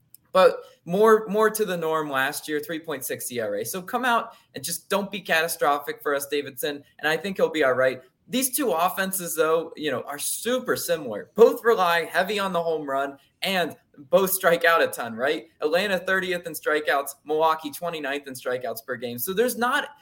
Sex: male